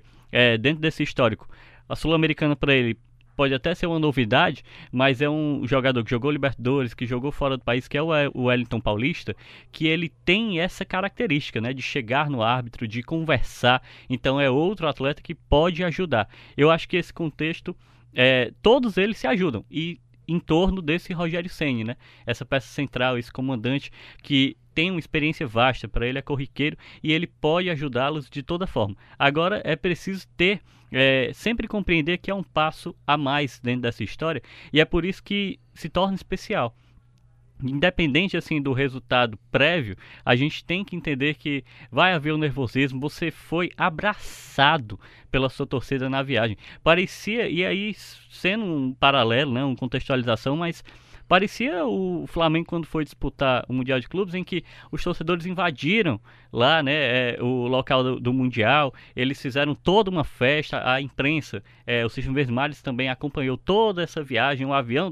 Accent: Brazilian